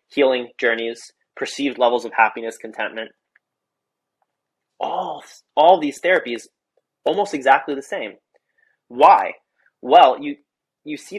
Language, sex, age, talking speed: English, male, 20-39, 105 wpm